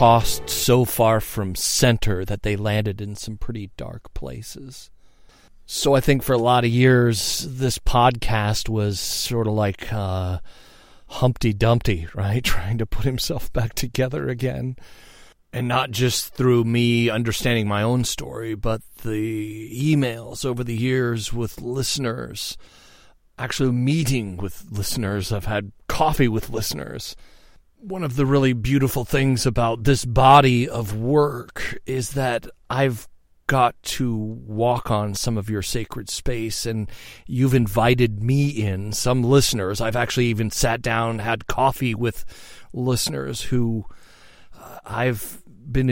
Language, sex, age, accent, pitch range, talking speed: English, male, 40-59, American, 105-125 Hz, 140 wpm